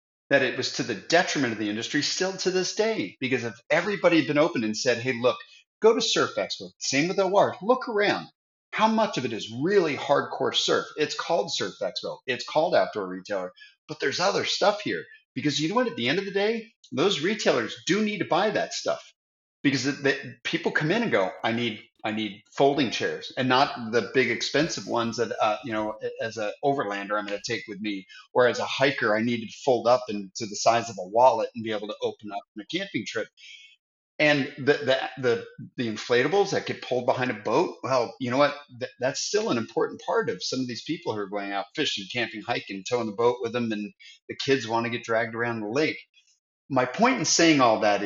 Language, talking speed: English, 230 wpm